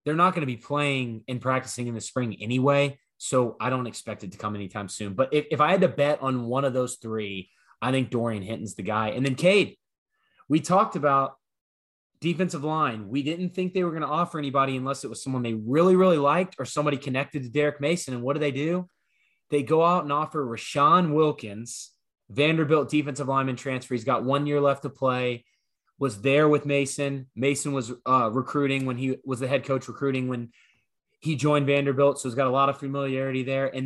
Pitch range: 125-145 Hz